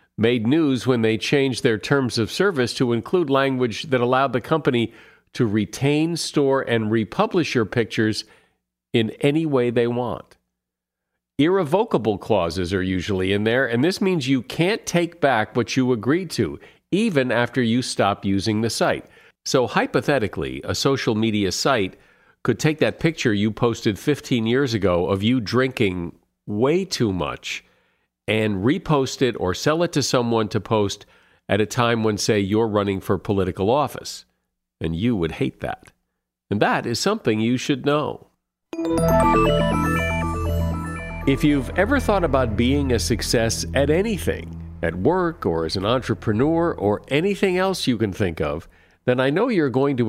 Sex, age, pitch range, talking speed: male, 50-69, 100-135 Hz, 160 wpm